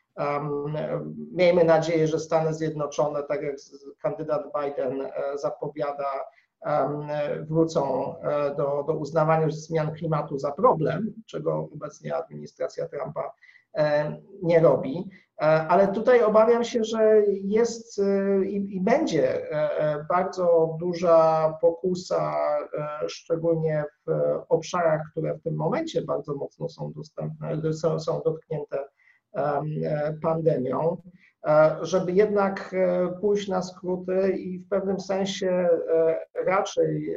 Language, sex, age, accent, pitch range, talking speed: Polish, male, 50-69, native, 155-185 Hz, 95 wpm